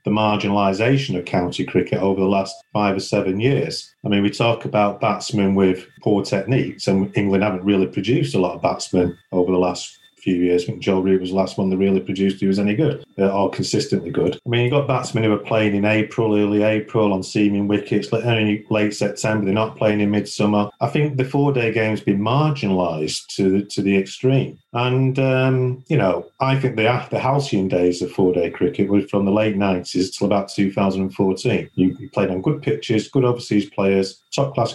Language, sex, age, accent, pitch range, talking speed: English, male, 40-59, British, 95-120 Hz, 200 wpm